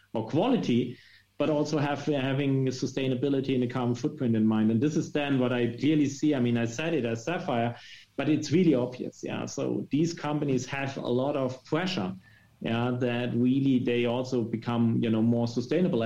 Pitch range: 115-145 Hz